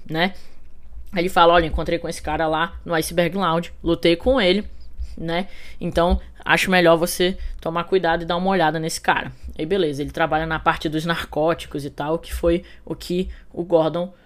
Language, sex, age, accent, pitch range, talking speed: English, female, 10-29, Brazilian, 165-195 Hz, 185 wpm